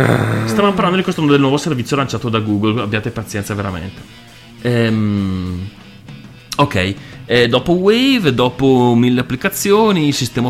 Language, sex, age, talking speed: Italian, male, 30-49, 120 wpm